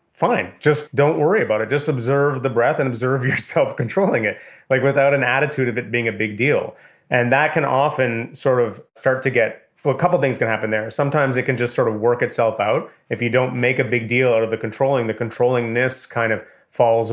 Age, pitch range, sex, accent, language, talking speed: 30-49, 120-140 Hz, male, American, English, 230 wpm